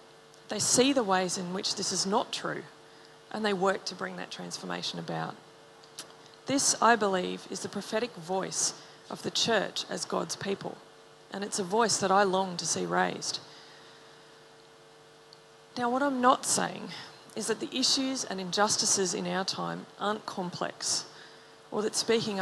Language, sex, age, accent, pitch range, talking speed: English, female, 30-49, Australian, 190-230 Hz, 160 wpm